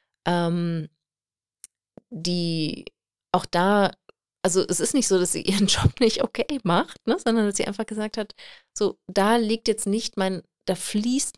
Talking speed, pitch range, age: 165 wpm, 160-205 Hz, 30-49